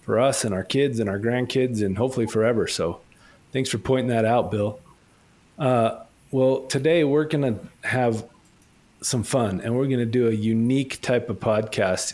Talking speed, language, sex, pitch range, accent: 185 wpm, English, male, 110-135 Hz, American